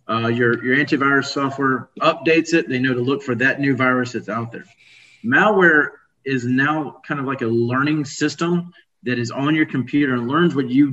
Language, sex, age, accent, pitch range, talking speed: English, male, 30-49, American, 120-150 Hz, 200 wpm